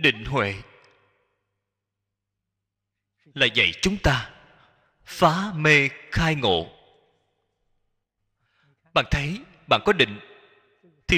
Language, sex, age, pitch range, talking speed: Vietnamese, male, 20-39, 100-160 Hz, 85 wpm